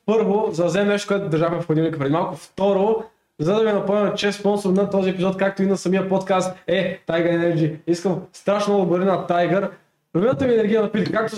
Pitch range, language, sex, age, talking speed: 165-200 Hz, Bulgarian, male, 20-39, 220 wpm